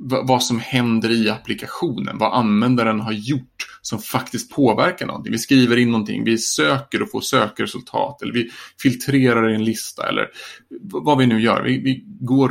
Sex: male